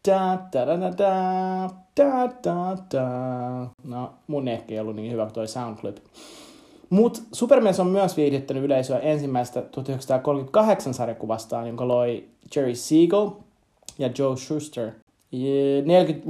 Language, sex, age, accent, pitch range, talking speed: Finnish, male, 30-49, native, 125-160 Hz, 130 wpm